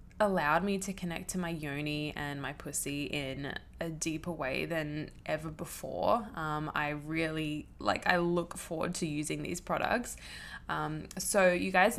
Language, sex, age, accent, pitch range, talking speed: English, female, 10-29, Australian, 170-210 Hz, 160 wpm